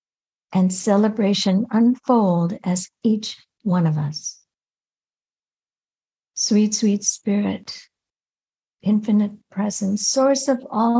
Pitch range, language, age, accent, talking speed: 195-235 Hz, English, 60-79, American, 85 wpm